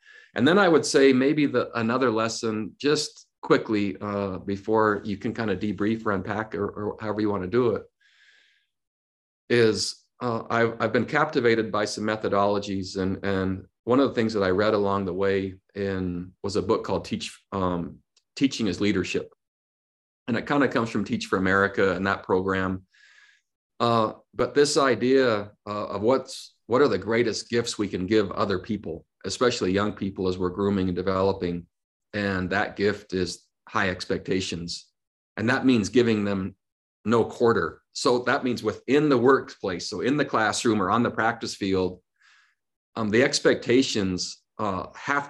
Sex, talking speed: male, 170 wpm